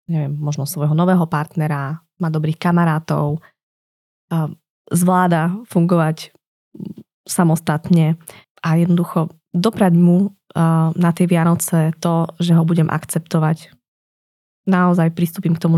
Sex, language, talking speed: female, Slovak, 105 wpm